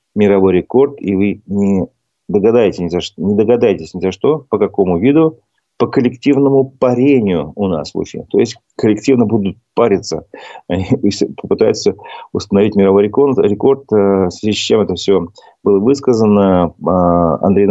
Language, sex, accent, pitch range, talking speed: Russian, male, native, 95-120 Hz, 140 wpm